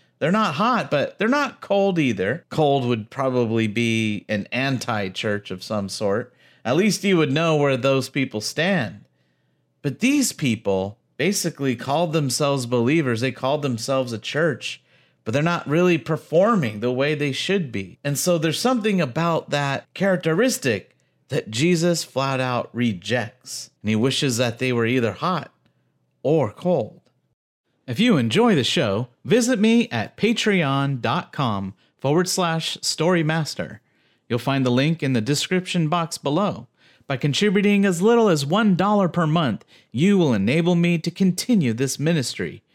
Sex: male